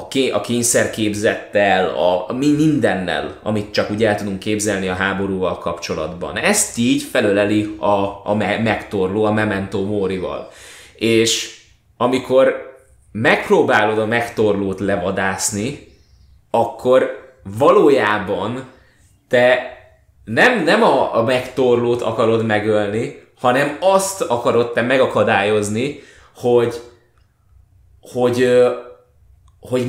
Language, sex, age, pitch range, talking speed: Hungarian, male, 20-39, 105-125 Hz, 95 wpm